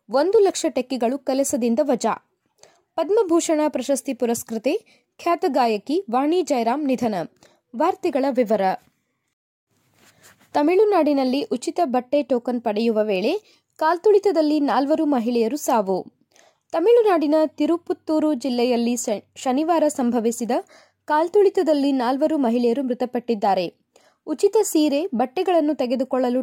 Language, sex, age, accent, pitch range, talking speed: Kannada, female, 20-39, native, 245-330 Hz, 85 wpm